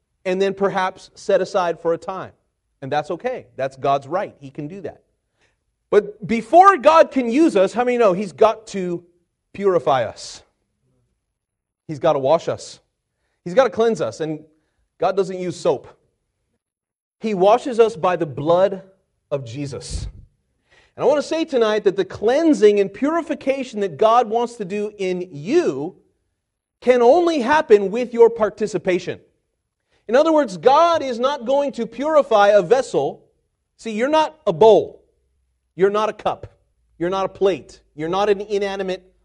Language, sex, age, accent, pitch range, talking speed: English, male, 30-49, American, 170-235 Hz, 165 wpm